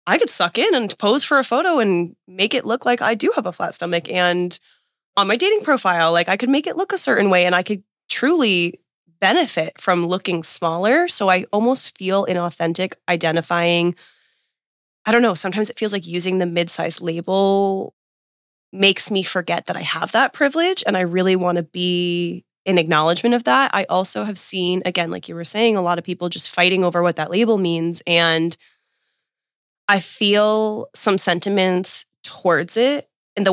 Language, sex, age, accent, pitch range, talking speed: English, female, 20-39, American, 175-210 Hz, 190 wpm